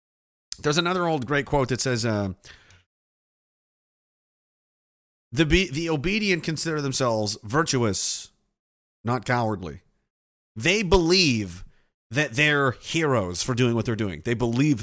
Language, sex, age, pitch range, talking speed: English, male, 30-49, 115-155 Hz, 115 wpm